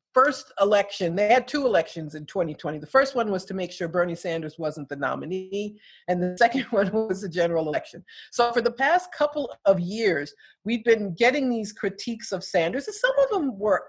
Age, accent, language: 50-69, American, English